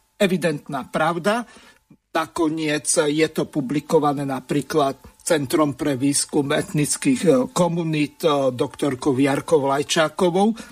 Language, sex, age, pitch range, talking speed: Slovak, male, 50-69, 145-180 Hz, 85 wpm